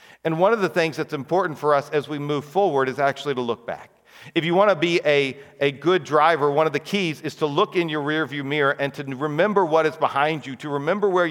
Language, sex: English, male